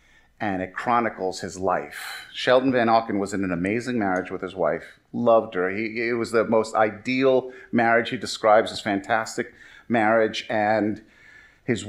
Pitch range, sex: 95-115 Hz, male